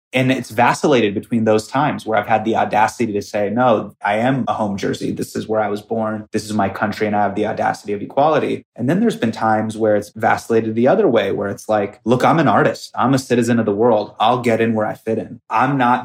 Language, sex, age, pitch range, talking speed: English, male, 30-49, 105-130 Hz, 260 wpm